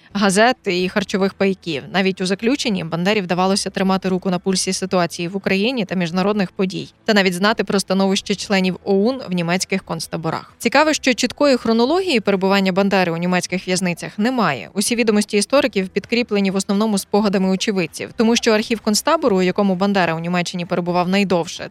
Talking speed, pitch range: 160 wpm, 185-215 Hz